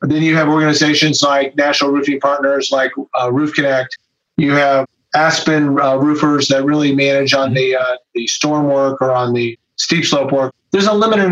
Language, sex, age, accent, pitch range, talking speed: English, male, 40-59, American, 135-155 Hz, 185 wpm